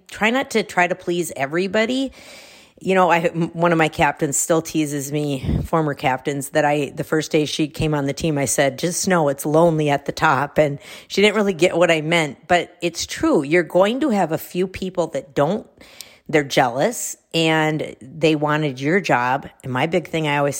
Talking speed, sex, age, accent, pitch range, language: 205 wpm, female, 50-69, American, 150-180 Hz, English